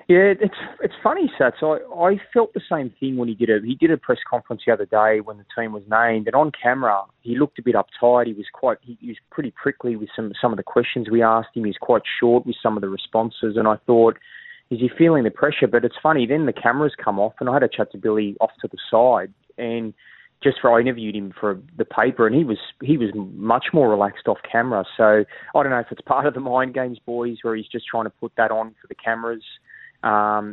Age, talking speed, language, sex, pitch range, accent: 20-39, 260 wpm, English, male, 105-125 Hz, Australian